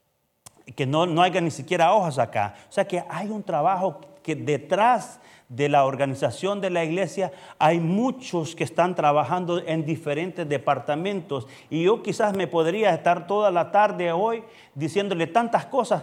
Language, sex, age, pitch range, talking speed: Spanish, male, 40-59, 150-200 Hz, 160 wpm